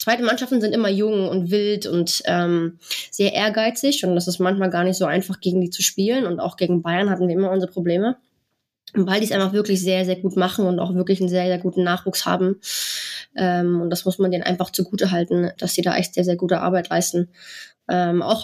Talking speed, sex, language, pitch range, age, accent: 225 wpm, female, German, 180-205 Hz, 20-39, German